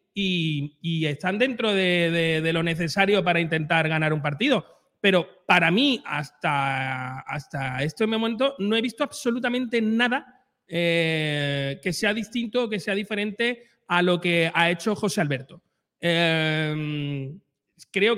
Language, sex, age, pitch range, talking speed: Spanish, male, 30-49, 175-240 Hz, 140 wpm